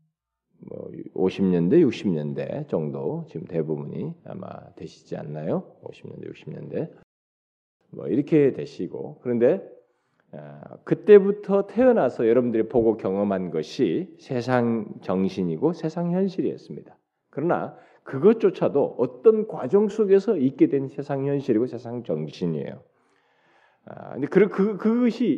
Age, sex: 40-59, male